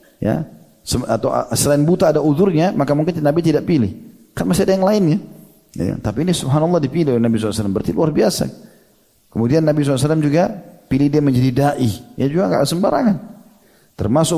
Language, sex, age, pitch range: Indonesian, male, 40-59, 105-145 Hz